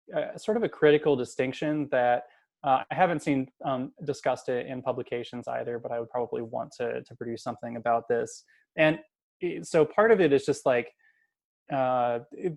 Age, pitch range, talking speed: 20-39, 125-150 Hz, 175 wpm